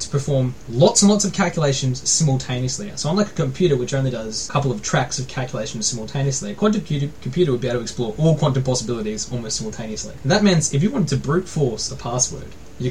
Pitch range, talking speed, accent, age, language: 125-180 Hz, 215 wpm, Australian, 20-39, English